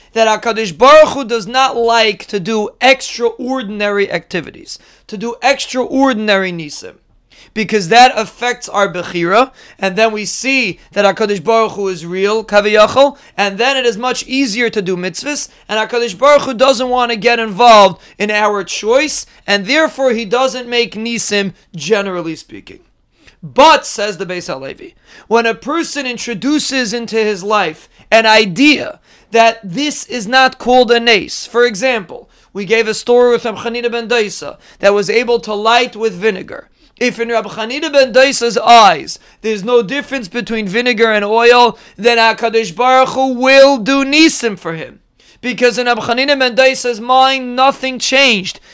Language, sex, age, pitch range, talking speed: English, male, 30-49, 215-260 Hz, 160 wpm